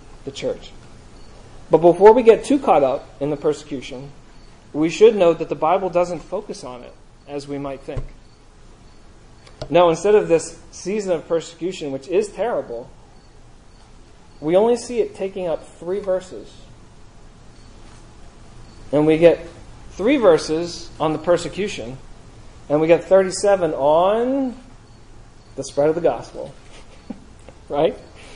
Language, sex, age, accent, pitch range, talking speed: English, male, 40-59, American, 120-170 Hz, 135 wpm